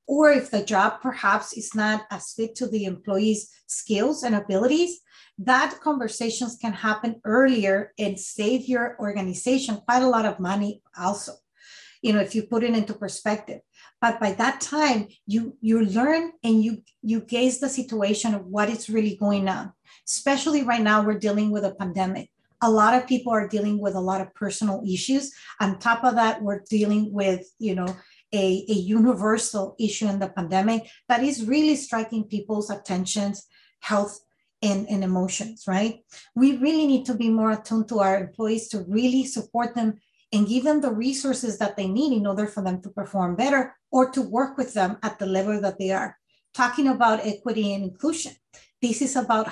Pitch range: 200-245 Hz